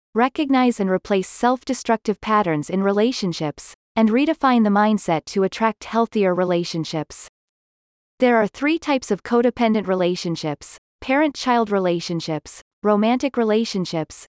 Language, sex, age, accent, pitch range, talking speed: English, female, 30-49, American, 180-245 Hz, 110 wpm